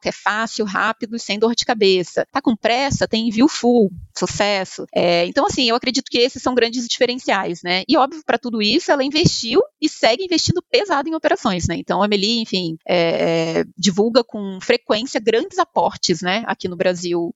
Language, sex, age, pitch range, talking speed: Portuguese, female, 20-39, 195-265 Hz, 180 wpm